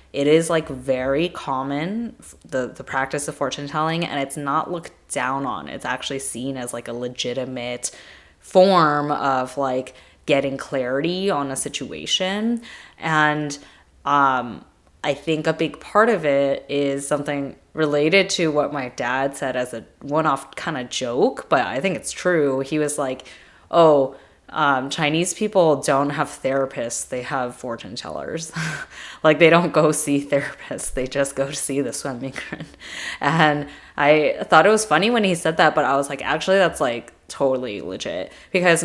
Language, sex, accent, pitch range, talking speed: English, female, American, 130-155 Hz, 165 wpm